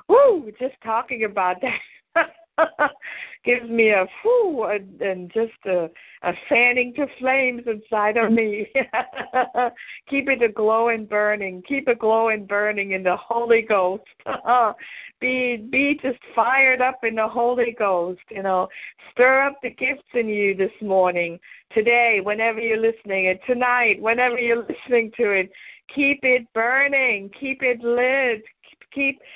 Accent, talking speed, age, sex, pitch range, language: American, 145 wpm, 50-69, female, 205-255 Hz, English